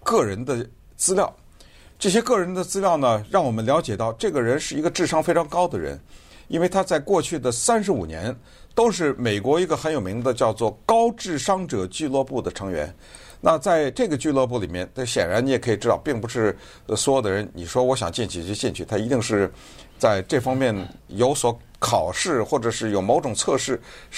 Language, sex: Chinese, male